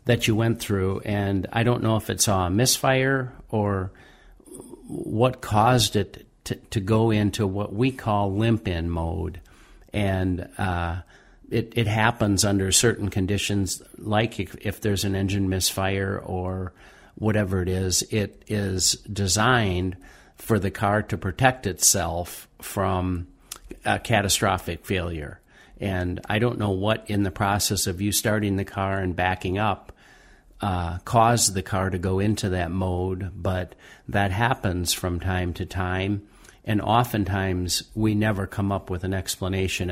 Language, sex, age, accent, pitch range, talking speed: English, male, 50-69, American, 90-105 Hz, 150 wpm